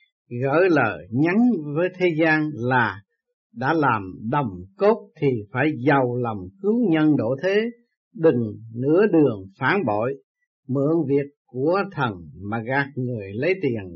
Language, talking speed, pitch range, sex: Vietnamese, 140 wpm, 130-200 Hz, male